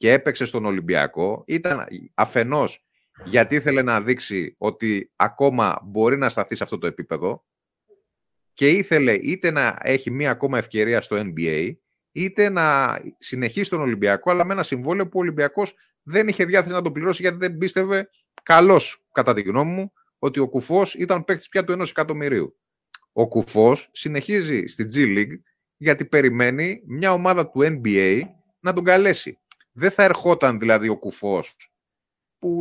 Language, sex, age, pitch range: Greek, male, 30-49, 120-175 Hz